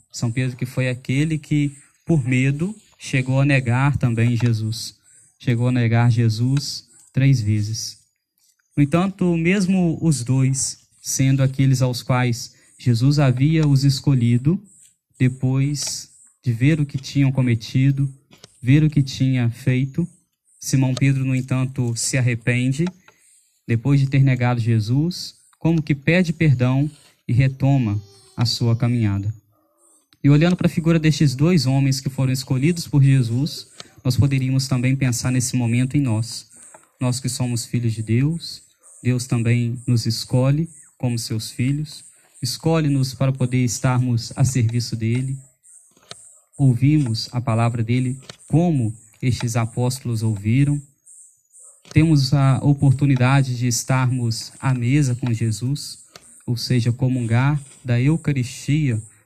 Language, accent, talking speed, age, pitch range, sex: Portuguese, Brazilian, 130 wpm, 20-39, 120-145 Hz, male